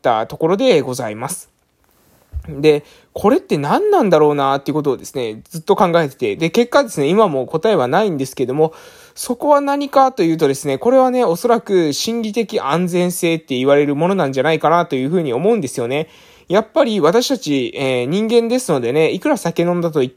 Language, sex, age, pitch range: Japanese, male, 20-39, 135-215 Hz